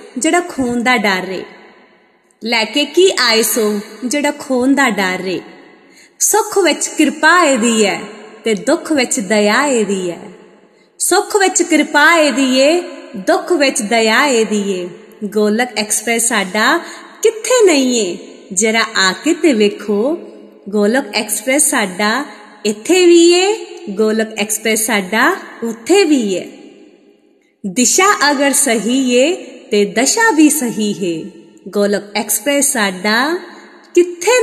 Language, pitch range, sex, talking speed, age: Punjabi, 215-330 Hz, female, 95 wpm, 20-39